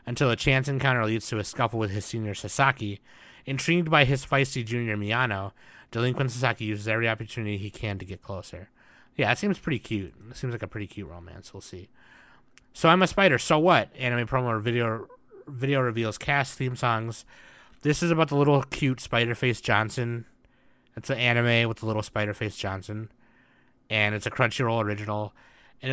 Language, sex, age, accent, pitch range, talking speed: English, male, 30-49, American, 105-135 Hz, 180 wpm